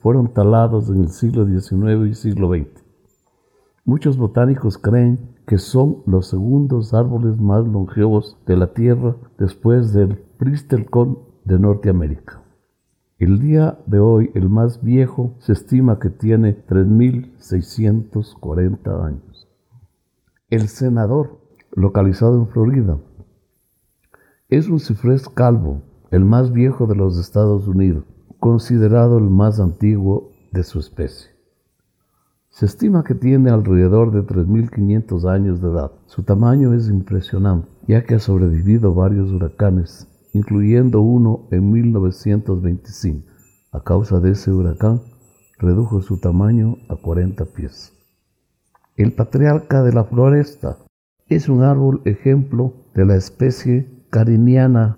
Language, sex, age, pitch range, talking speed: Spanish, male, 50-69, 95-120 Hz, 120 wpm